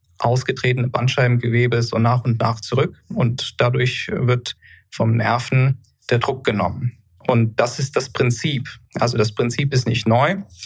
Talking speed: 145 wpm